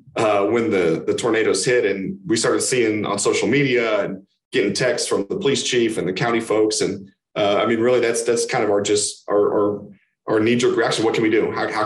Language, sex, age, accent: English, male, 30-49, American